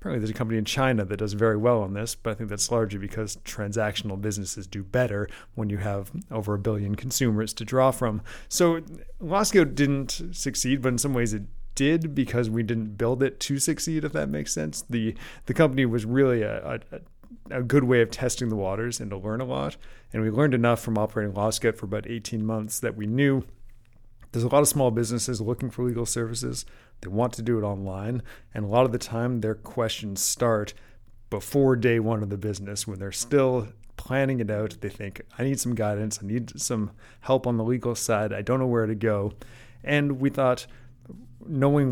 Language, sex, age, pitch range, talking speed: English, male, 30-49, 105-130 Hz, 210 wpm